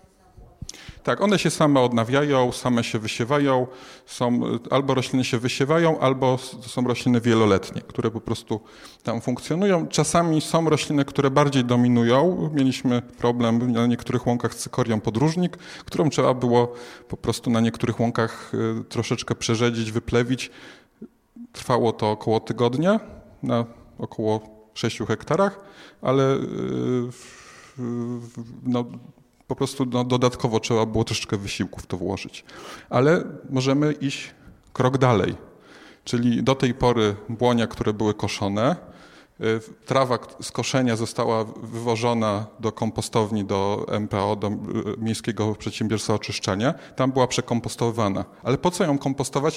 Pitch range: 115-135 Hz